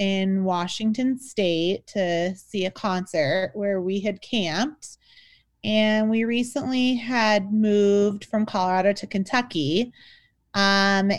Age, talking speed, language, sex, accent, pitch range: 30-49, 115 wpm, English, female, American, 195-255 Hz